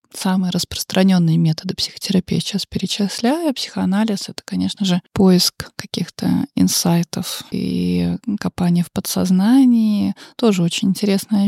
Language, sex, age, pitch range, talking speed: Russian, female, 20-39, 185-210 Hz, 110 wpm